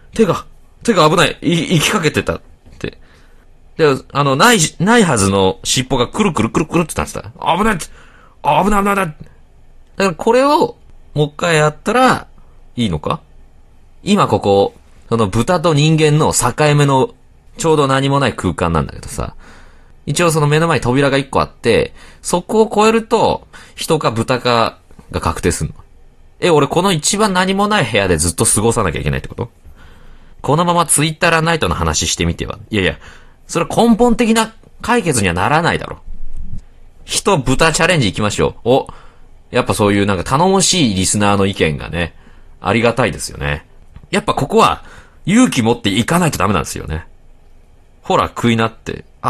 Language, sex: Japanese, male